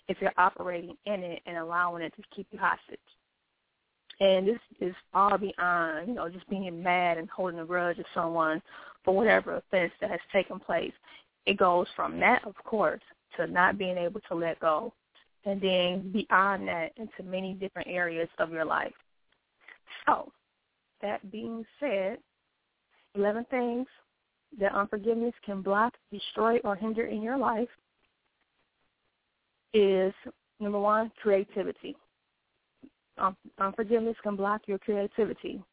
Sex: female